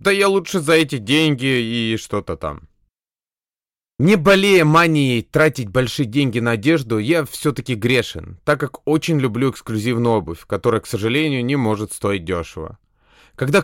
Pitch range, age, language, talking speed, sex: 115-155 Hz, 20-39, Russian, 150 wpm, male